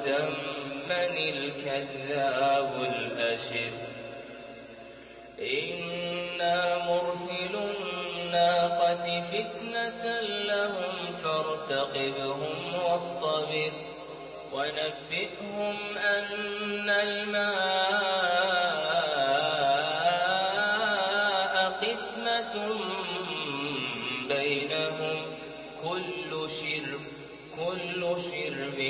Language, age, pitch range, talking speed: Arabic, 20-39, 140-185 Hz, 40 wpm